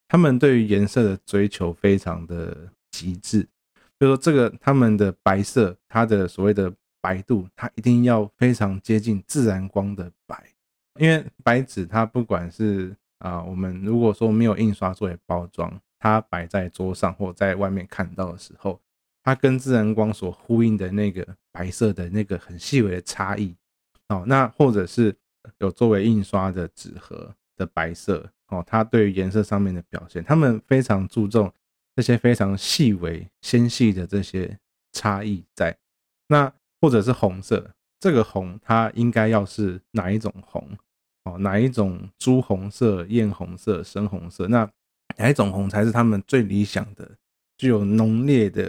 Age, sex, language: 20-39, male, Chinese